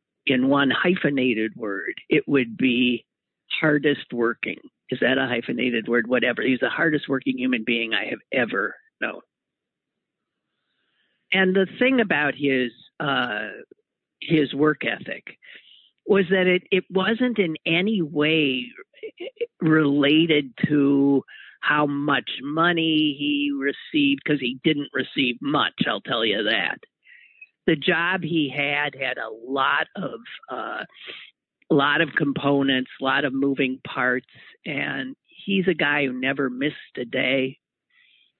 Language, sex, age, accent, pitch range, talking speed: English, male, 50-69, American, 135-185 Hz, 125 wpm